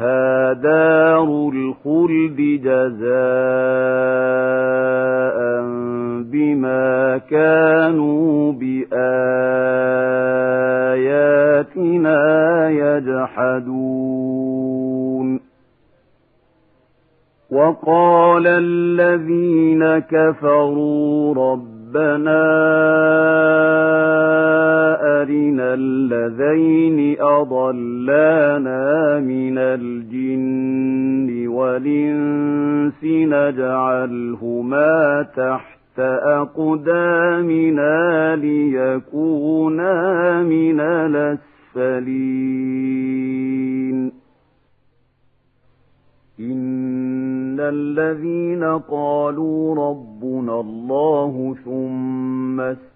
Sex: male